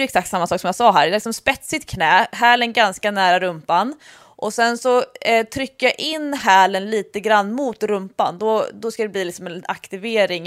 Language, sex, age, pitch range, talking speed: English, female, 20-39, 195-250 Hz, 180 wpm